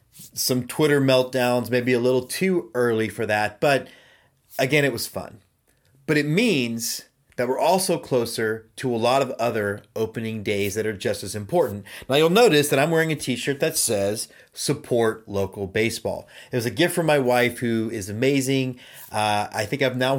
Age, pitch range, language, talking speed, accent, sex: 30-49, 105-135 Hz, English, 185 wpm, American, male